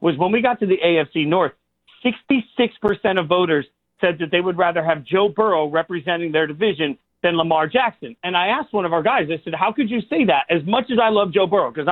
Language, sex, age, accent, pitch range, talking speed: English, male, 40-59, American, 160-210 Hz, 235 wpm